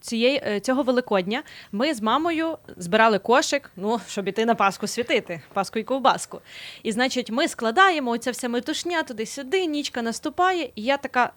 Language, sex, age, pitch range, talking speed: Ukrainian, female, 20-39, 200-265 Hz, 160 wpm